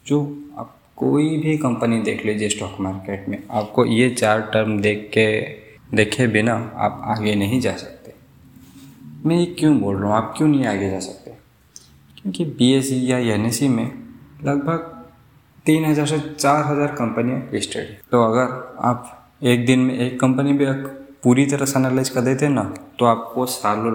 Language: Hindi